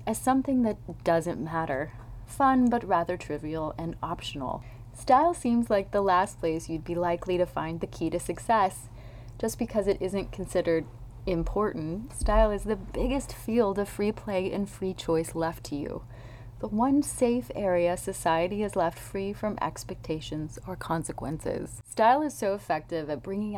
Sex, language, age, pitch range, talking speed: female, English, 30-49, 150-210 Hz, 165 wpm